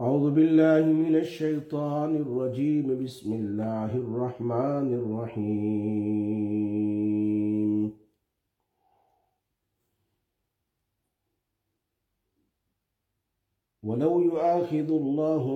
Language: English